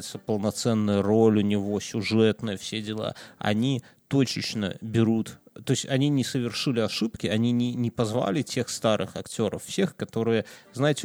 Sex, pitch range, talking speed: male, 110-135 Hz, 140 wpm